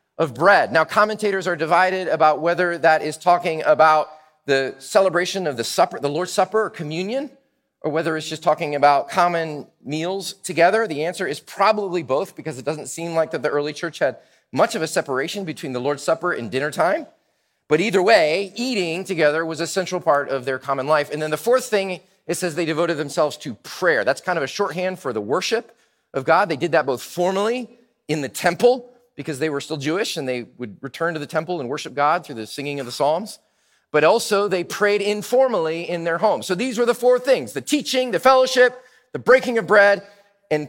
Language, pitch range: English, 155-225 Hz